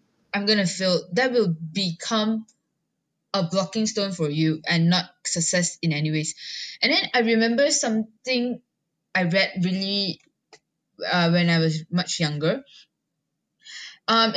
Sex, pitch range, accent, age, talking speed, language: female, 175-235 Hz, Malaysian, 10-29, 140 wpm, English